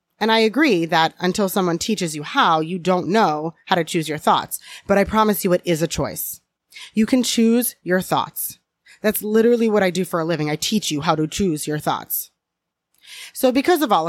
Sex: female